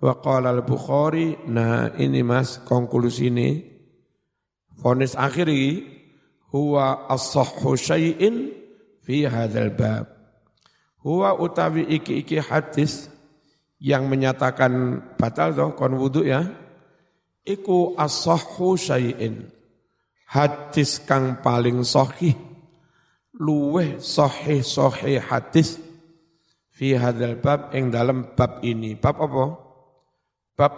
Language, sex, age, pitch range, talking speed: Indonesian, male, 50-69, 120-155 Hz, 90 wpm